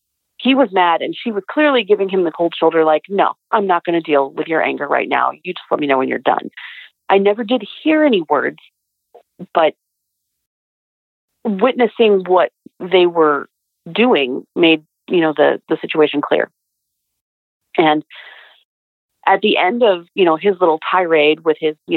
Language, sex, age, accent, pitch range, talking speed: English, female, 40-59, American, 155-205 Hz, 175 wpm